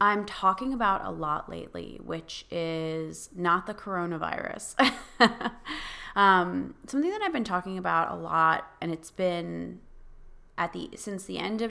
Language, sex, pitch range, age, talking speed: English, female, 165-200 Hz, 20-39, 150 wpm